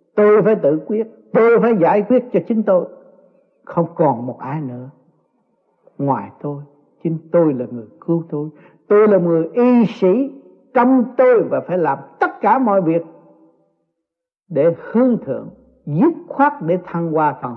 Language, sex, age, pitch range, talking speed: Vietnamese, male, 60-79, 145-205 Hz, 160 wpm